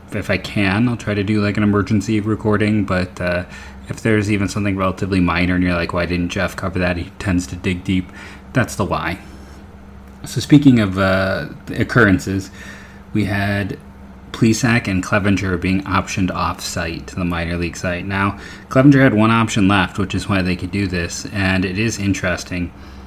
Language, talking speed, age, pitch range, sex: English, 185 wpm, 30-49, 90-105 Hz, male